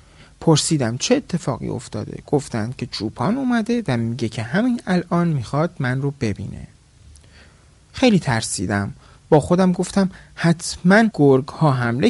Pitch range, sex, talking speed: 115-180 Hz, male, 130 wpm